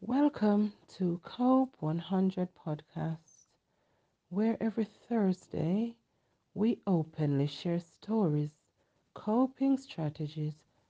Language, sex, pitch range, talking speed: English, female, 145-195 Hz, 75 wpm